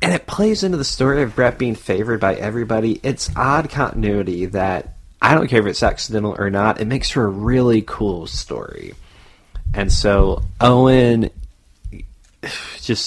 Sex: male